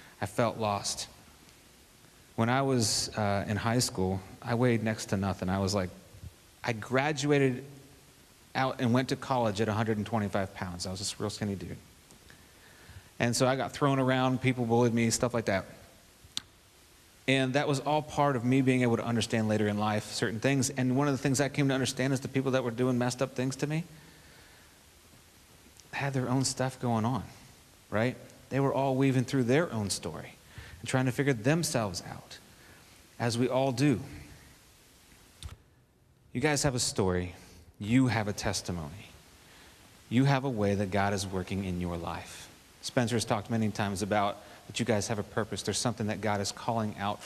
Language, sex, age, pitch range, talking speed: English, male, 30-49, 100-130 Hz, 185 wpm